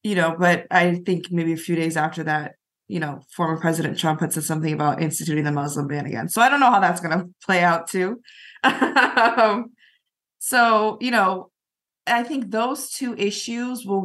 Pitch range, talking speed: 175-215 Hz, 195 wpm